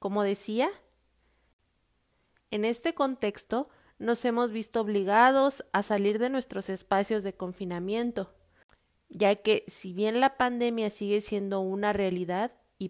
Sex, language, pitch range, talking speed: female, Spanish, 190-230 Hz, 125 wpm